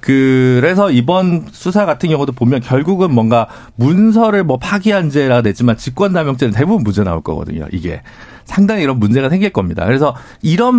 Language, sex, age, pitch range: Korean, male, 40-59, 115-185 Hz